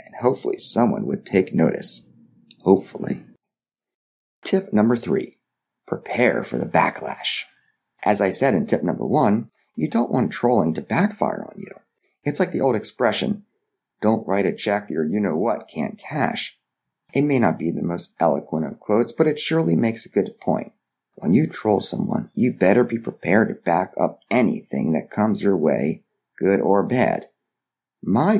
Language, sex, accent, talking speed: English, male, American, 165 wpm